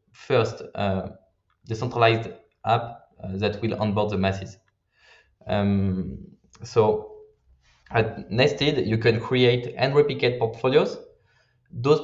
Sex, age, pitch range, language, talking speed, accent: male, 20-39, 105-135 Hz, Portuguese, 105 wpm, French